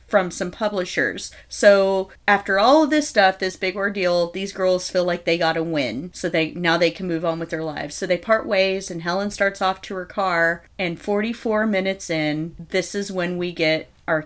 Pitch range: 170-205 Hz